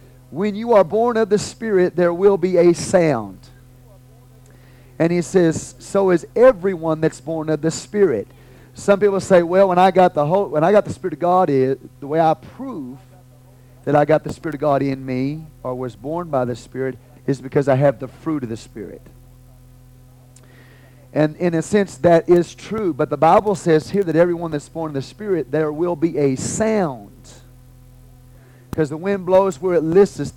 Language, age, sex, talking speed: English, 40-59, male, 195 wpm